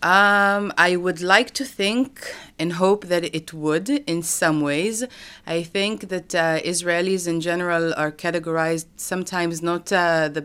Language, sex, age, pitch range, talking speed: Dutch, female, 30-49, 165-210 Hz, 155 wpm